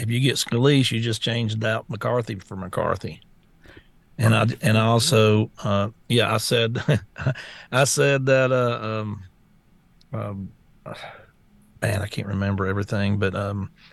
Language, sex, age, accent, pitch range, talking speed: English, male, 50-69, American, 115-145 Hz, 140 wpm